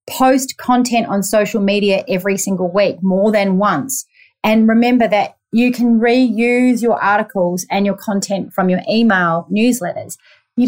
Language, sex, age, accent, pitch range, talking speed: English, female, 30-49, Australian, 185-225 Hz, 150 wpm